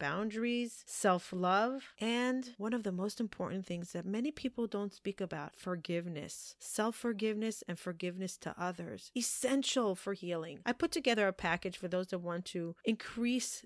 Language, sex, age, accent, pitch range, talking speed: English, female, 30-49, American, 180-220 Hz, 155 wpm